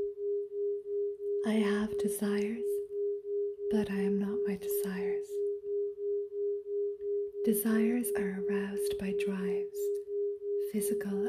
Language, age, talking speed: English, 20-39, 80 wpm